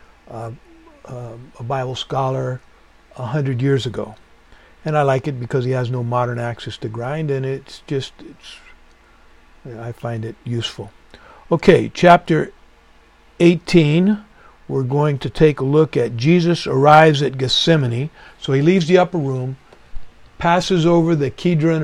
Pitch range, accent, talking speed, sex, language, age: 125-155 Hz, American, 145 wpm, male, English, 60-79